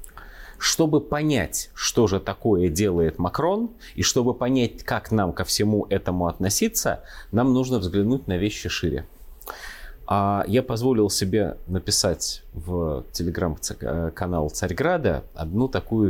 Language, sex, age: Russian, male, 30-49